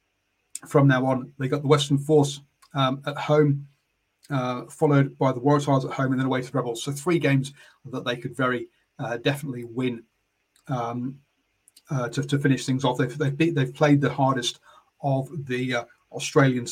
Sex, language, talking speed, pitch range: male, English, 180 wpm, 130-150 Hz